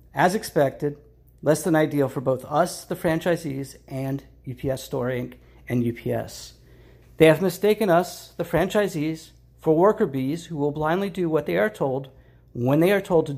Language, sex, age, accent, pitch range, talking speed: English, male, 50-69, American, 140-185 Hz, 170 wpm